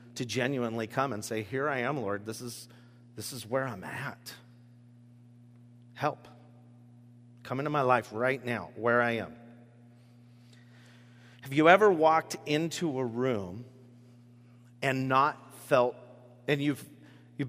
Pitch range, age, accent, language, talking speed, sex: 120-165 Hz, 40-59, American, English, 125 wpm, male